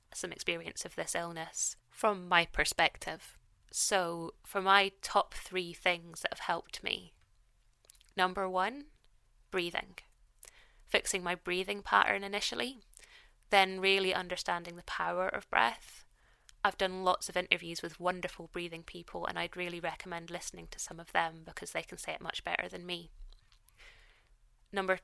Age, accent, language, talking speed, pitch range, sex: 20-39, British, English, 145 wpm, 165-190 Hz, female